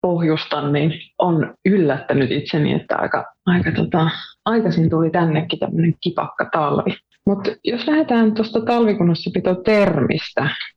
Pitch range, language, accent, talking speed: 145-190 Hz, Finnish, native, 105 wpm